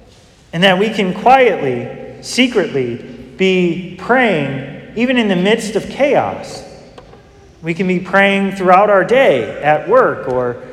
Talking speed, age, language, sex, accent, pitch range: 135 wpm, 30-49, English, male, American, 145-195 Hz